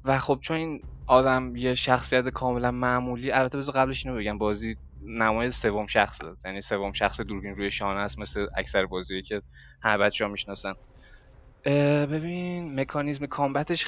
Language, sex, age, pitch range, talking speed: Persian, male, 20-39, 105-130 Hz, 150 wpm